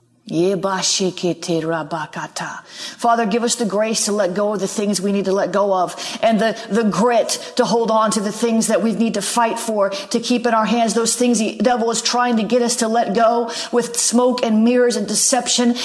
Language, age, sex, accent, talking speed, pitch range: English, 40-59, female, American, 210 wpm, 210-245 Hz